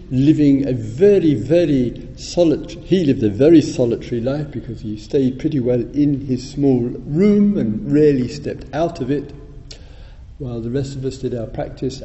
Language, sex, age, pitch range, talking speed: English, male, 50-69, 120-150 Hz, 170 wpm